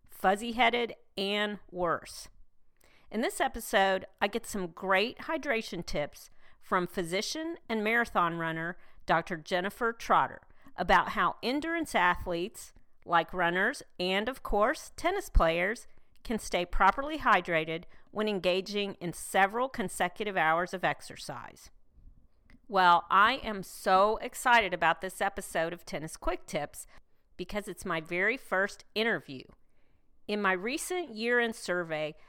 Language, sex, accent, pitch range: English, female, American, 180-235 Hz